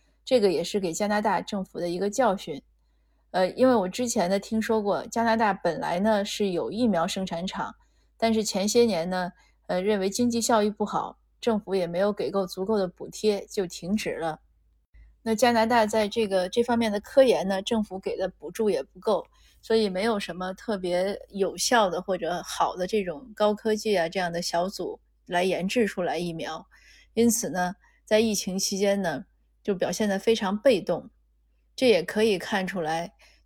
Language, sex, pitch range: Chinese, female, 180-220 Hz